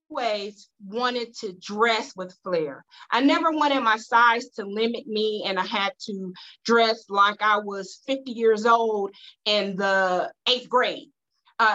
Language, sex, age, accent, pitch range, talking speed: English, female, 30-49, American, 215-280 Hz, 155 wpm